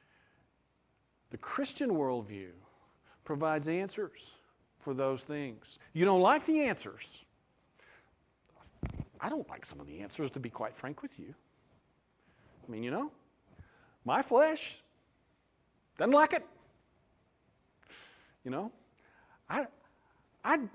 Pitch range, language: 120-180 Hz, English